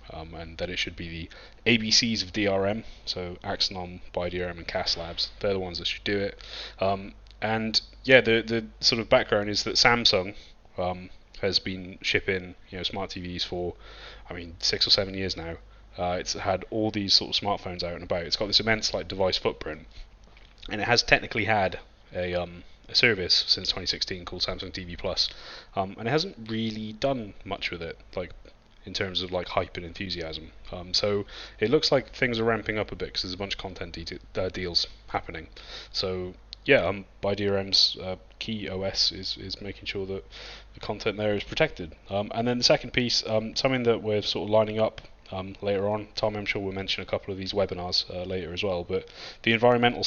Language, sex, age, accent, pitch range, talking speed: English, male, 20-39, British, 90-110 Hz, 210 wpm